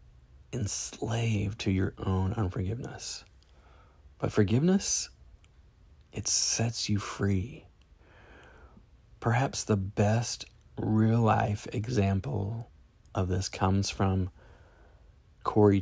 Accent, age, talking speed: American, 30-49, 75 wpm